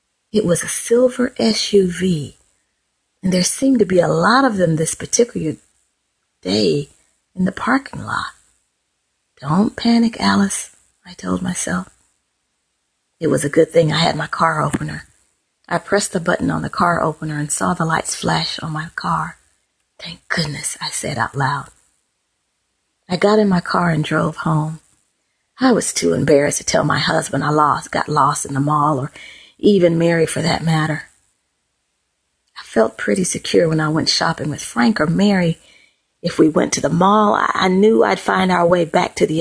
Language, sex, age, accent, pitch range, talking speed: English, female, 40-59, American, 150-190 Hz, 175 wpm